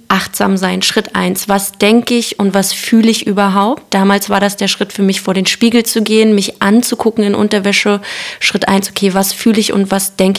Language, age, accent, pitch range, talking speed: German, 20-39, German, 195-220 Hz, 215 wpm